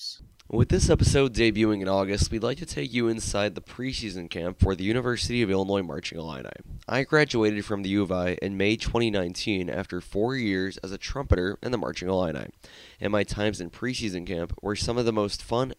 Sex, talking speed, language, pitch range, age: male, 205 wpm, English, 105-145 Hz, 20-39